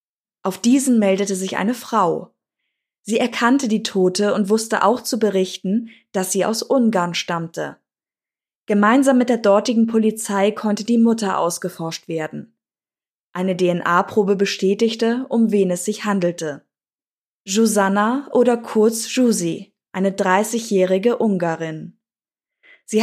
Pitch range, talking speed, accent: 190-230 Hz, 120 wpm, German